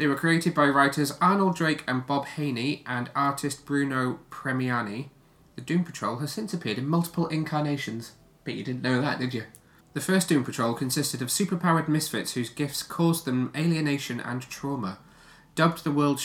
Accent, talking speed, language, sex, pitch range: British, 175 wpm, English, male, 105-145 Hz